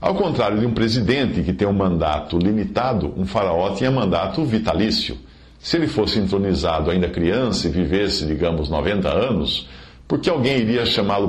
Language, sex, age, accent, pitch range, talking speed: Portuguese, male, 50-69, Brazilian, 75-120 Hz, 165 wpm